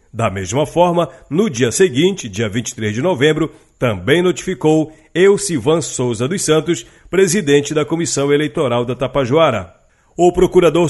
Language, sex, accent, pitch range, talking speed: Portuguese, male, Brazilian, 130-165 Hz, 130 wpm